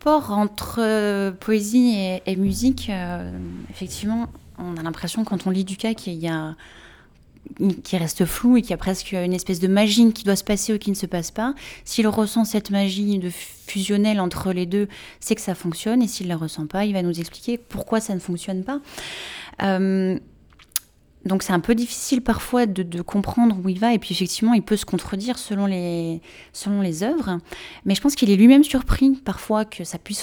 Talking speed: 200 wpm